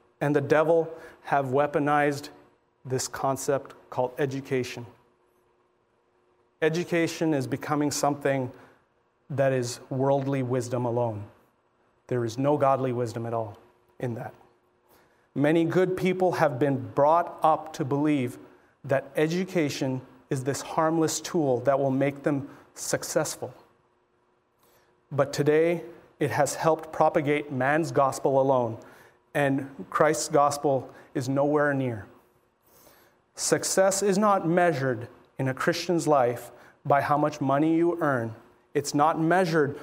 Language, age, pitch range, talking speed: English, 40-59, 130-165 Hz, 120 wpm